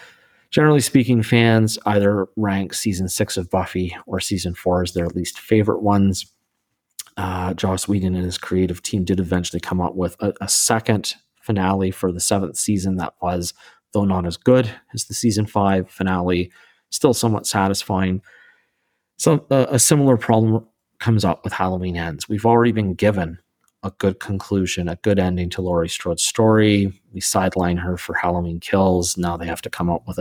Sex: male